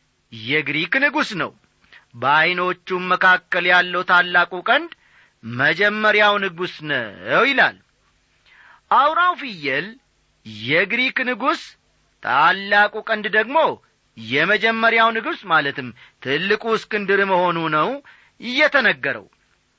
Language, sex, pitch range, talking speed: Amharic, male, 155-215 Hz, 80 wpm